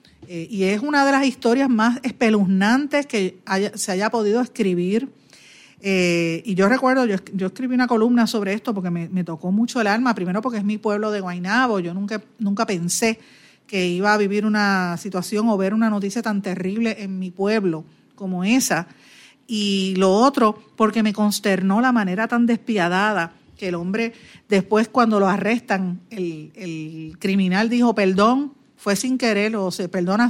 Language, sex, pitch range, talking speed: Spanish, female, 180-225 Hz, 175 wpm